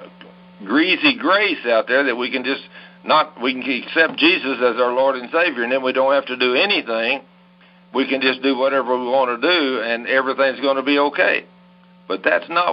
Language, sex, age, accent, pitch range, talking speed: English, male, 60-79, American, 125-180 Hz, 205 wpm